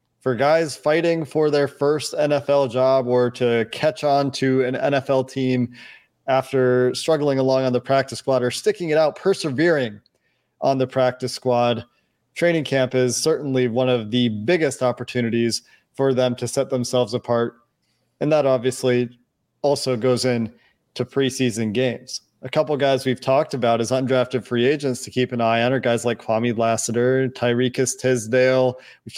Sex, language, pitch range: male, English, 125-140 Hz